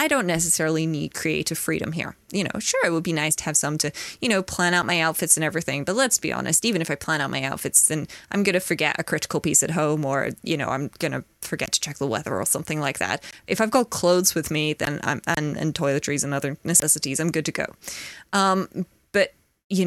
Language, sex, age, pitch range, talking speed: English, female, 20-39, 160-195 Hz, 250 wpm